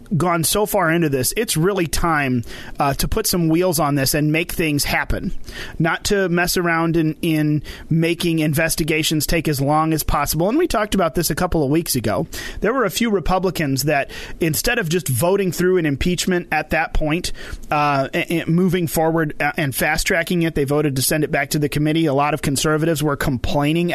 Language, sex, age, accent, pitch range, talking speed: English, male, 30-49, American, 155-190 Hz, 205 wpm